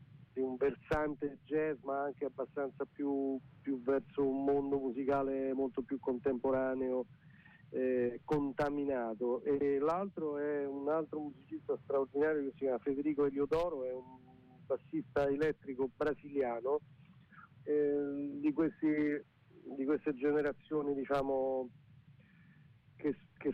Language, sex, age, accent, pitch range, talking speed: Italian, male, 40-59, native, 130-150 Hz, 100 wpm